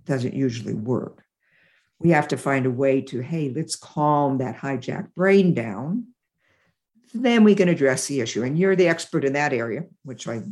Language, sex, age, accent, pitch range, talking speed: English, female, 60-79, American, 135-195 Hz, 185 wpm